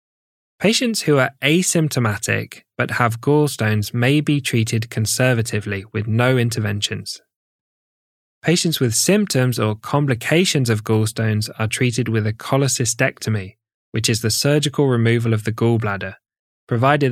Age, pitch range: 10-29, 110-135 Hz